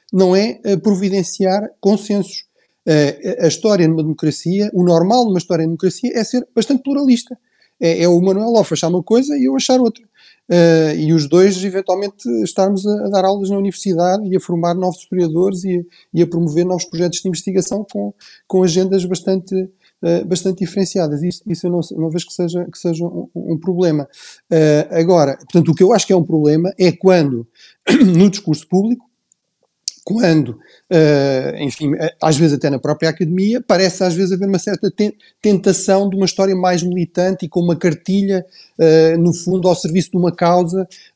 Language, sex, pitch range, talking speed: Portuguese, male, 165-195 Hz, 165 wpm